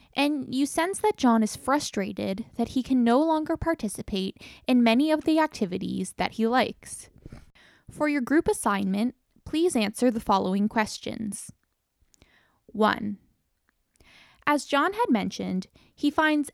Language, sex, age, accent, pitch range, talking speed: English, female, 10-29, American, 215-310 Hz, 135 wpm